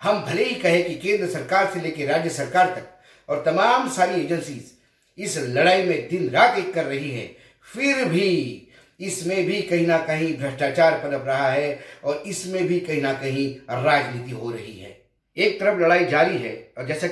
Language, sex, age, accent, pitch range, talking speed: Hindi, male, 50-69, native, 145-185 Hz, 185 wpm